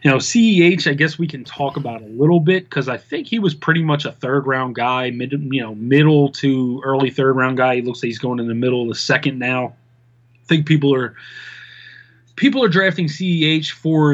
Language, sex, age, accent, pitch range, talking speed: English, male, 20-39, American, 125-170 Hz, 215 wpm